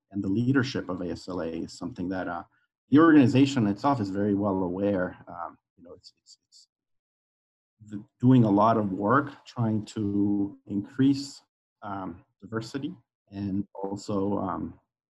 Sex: male